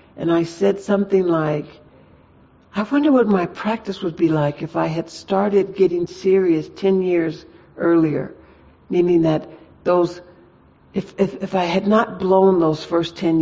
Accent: American